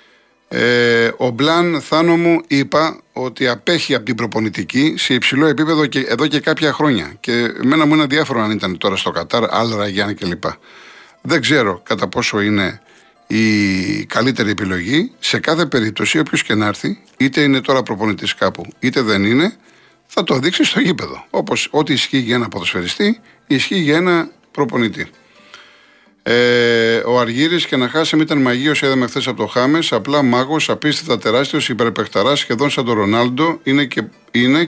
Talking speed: 170 wpm